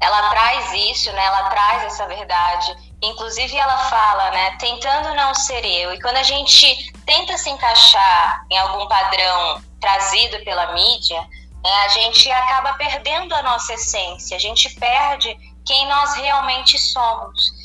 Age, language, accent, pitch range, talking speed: 20-39, Portuguese, Brazilian, 215-280 Hz, 150 wpm